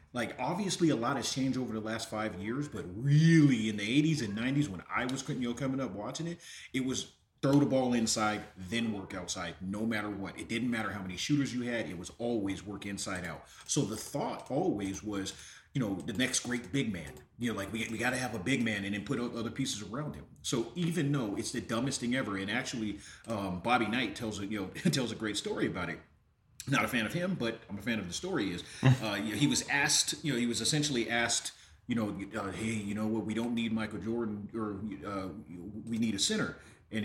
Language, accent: English, American